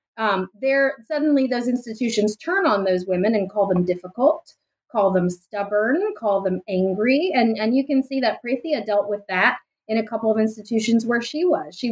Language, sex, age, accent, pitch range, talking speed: English, female, 30-49, American, 205-270 Hz, 190 wpm